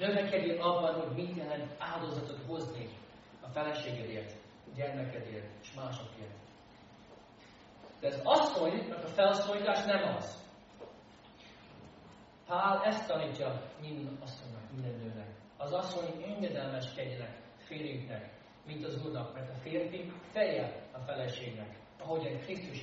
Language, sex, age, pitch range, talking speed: Hungarian, male, 40-59, 120-175 Hz, 110 wpm